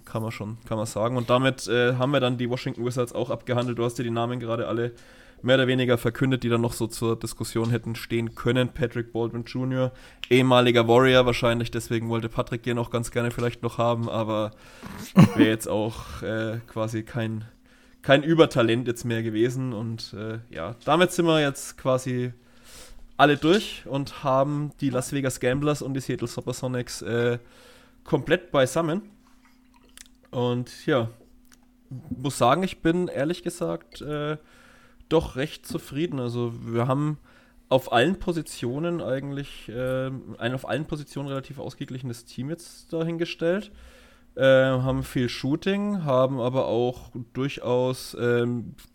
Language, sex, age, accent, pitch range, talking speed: German, male, 20-39, German, 120-145 Hz, 155 wpm